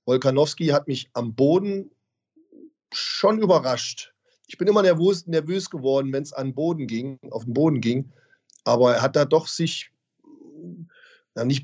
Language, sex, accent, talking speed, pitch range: German, male, German, 140 wpm, 140-175 Hz